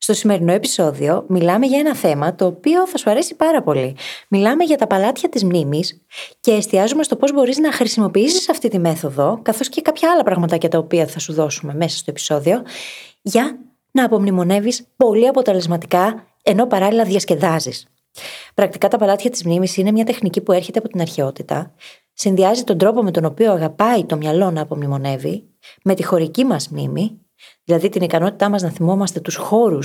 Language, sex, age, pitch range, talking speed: Greek, female, 20-39, 165-230 Hz, 175 wpm